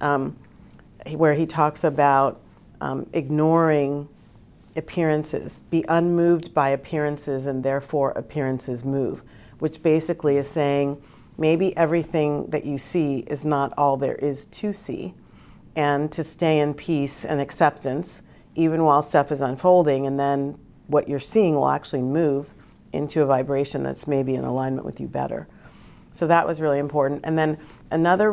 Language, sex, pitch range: English, female, 140-165 Hz